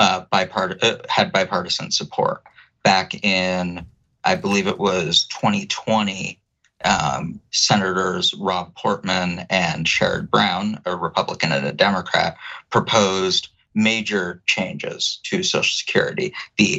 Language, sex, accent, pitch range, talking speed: English, male, American, 90-115 Hz, 115 wpm